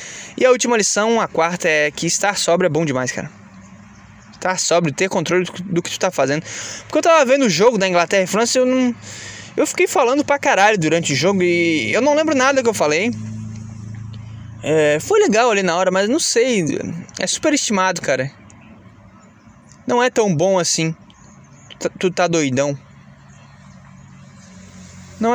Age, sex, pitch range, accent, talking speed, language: 20-39, male, 140-220 Hz, Brazilian, 175 wpm, Portuguese